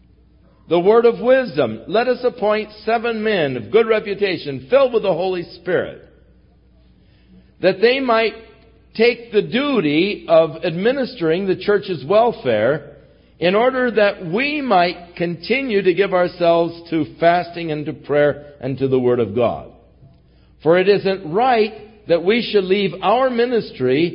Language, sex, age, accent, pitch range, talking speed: English, male, 60-79, American, 130-205 Hz, 145 wpm